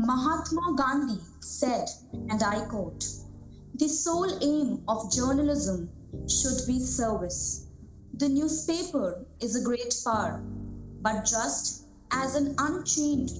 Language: English